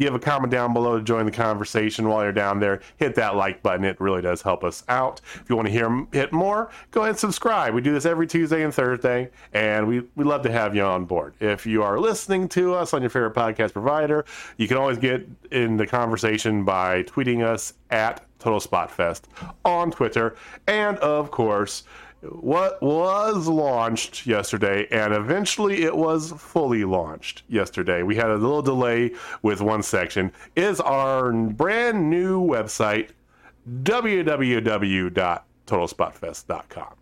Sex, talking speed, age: male, 170 wpm, 40-59